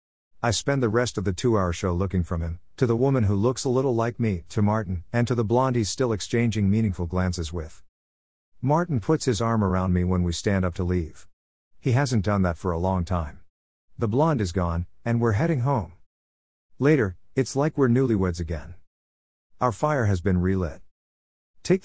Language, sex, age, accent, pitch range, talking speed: English, male, 50-69, American, 85-120 Hz, 200 wpm